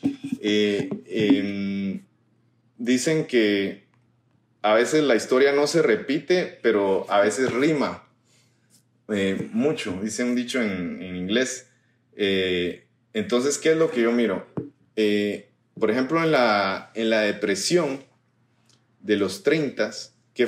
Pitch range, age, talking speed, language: 110-130 Hz, 30-49, 125 wpm, Spanish